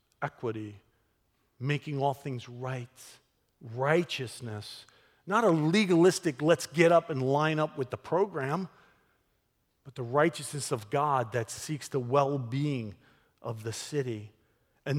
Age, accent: 50-69, American